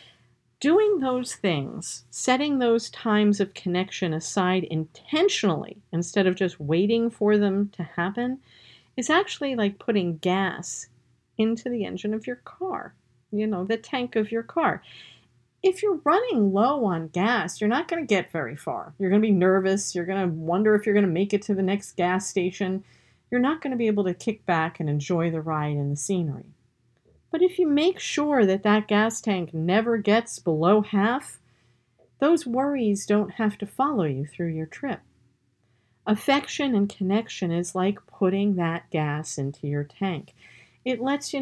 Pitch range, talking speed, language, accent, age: 160-230 Hz, 175 wpm, English, American, 50-69